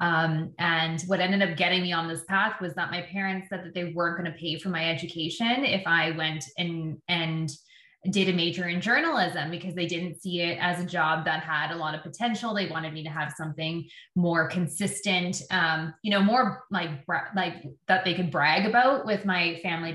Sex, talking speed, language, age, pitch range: female, 210 wpm, English, 20-39, 165-190 Hz